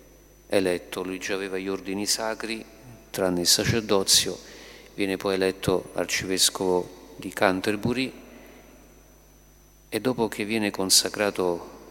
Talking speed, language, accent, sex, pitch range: 105 wpm, Italian, native, male, 90-105 Hz